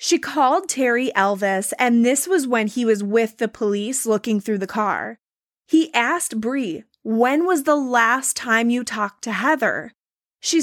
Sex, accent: female, American